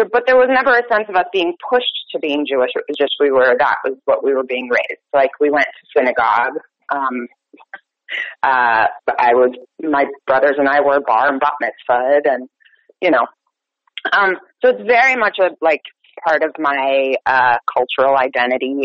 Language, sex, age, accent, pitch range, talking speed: English, female, 30-49, American, 150-240 Hz, 190 wpm